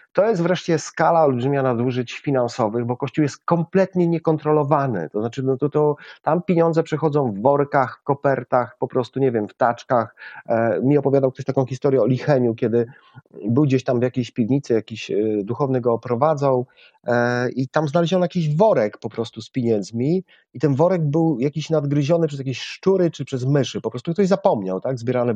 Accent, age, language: native, 40-59, Polish